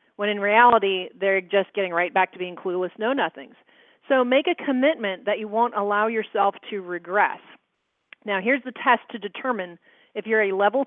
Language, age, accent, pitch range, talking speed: English, 40-59, American, 190-250 Hz, 180 wpm